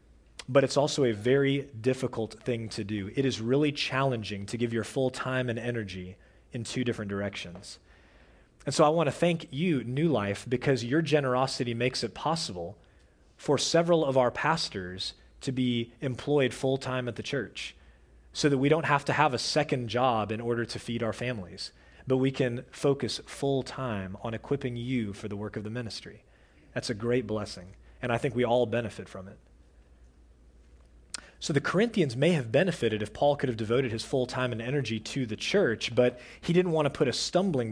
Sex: male